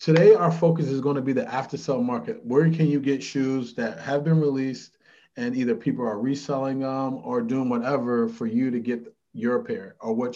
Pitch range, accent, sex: 125-165 Hz, American, male